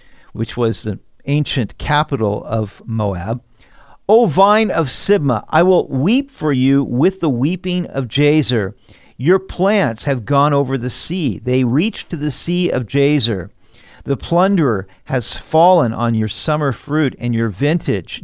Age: 50-69